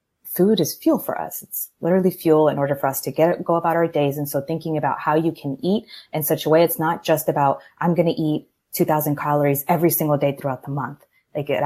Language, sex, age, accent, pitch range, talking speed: English, female, 20-39, American, 145-165 Hz, 240 wpm